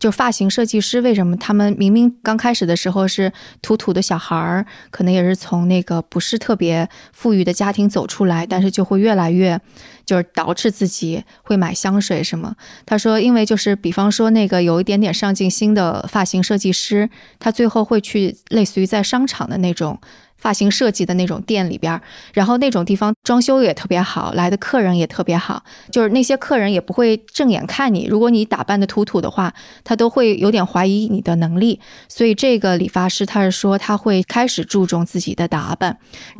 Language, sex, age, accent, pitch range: Chinese, female, 20-39, native, 185-220 Hz